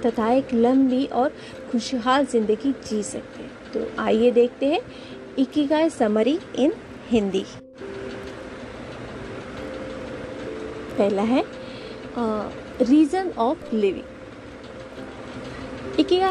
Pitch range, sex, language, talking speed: 230-290 Hz, female, Hindi, 85 wpm